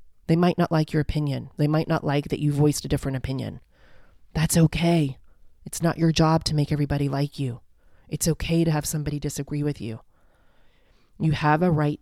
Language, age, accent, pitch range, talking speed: English, 30-49, American, 140-170 Hz, 195 wpm